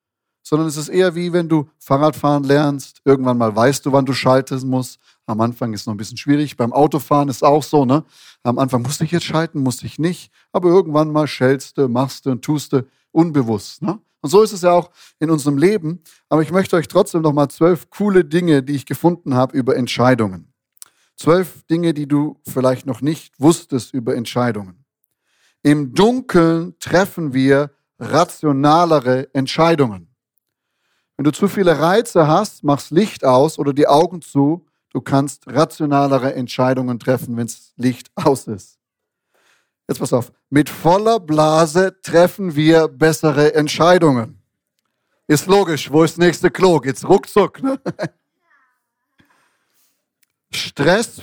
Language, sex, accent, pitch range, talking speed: German, male, German, 130-170 Hz, 160 wpm